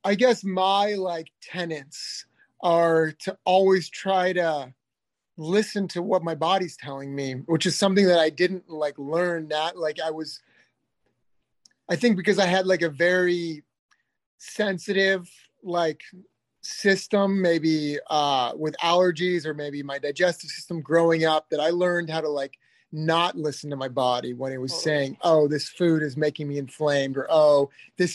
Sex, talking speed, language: male, 160 wpm, English